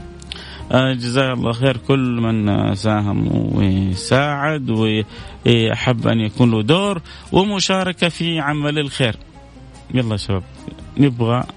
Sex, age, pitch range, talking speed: male, 30-49, 115-145 Hz, 100 wpm